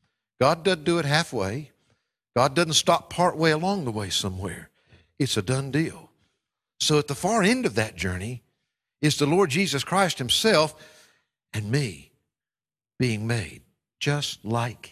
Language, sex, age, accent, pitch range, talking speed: English, male, 50-69, American, 110-170 Hz, 150 wpm